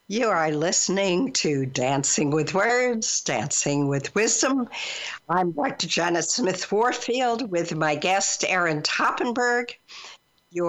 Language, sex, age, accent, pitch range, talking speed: English, female, 60-79, American, 180-245 Hz, 110 wpm